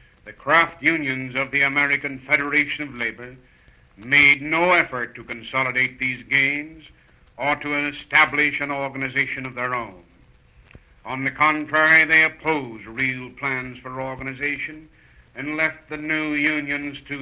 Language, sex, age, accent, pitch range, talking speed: English, male, 60-79, American, 125-150 Hz, 135 wpm